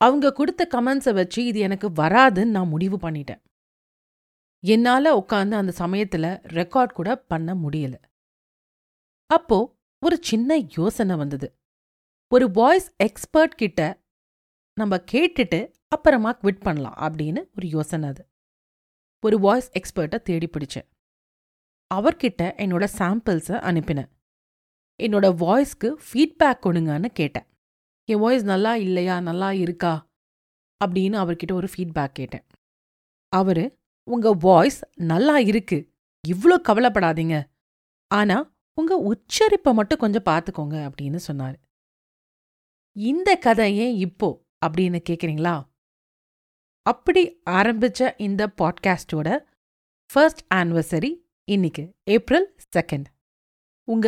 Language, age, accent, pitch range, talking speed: Tamil, 40-59, native, 160-235 Hz, 75 wpm